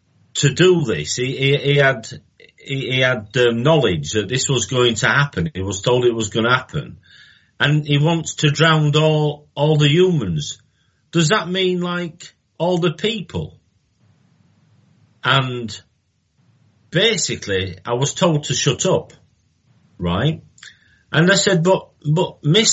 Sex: male